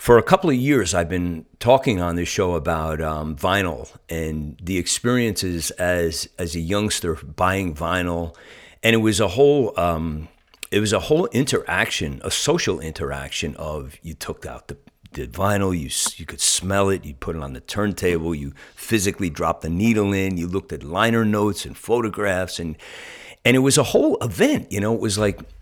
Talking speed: 185 wpm